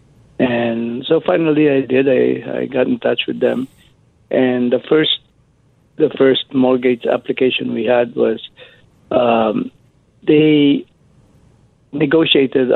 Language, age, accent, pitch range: English, 50-69, Filipino, 120-140 Hz